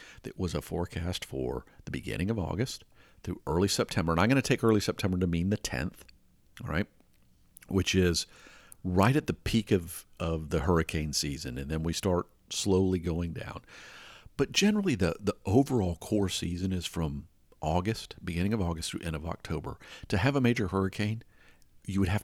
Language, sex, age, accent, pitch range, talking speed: English, male, 50-69, American, 85-110 Hz, 185 wpm